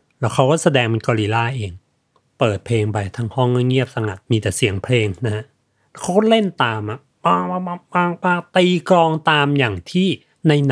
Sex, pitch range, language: male, 125-160 Hz, Thai